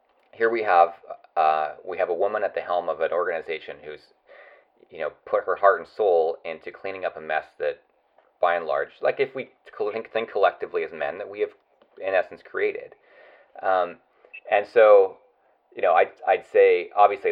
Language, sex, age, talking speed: English, male, 30-49, 185 wpm